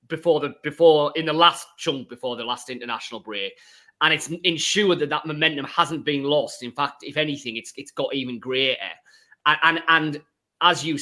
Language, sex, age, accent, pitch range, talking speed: English, male, 30-49, British, 120-155 Hz, 190 wpm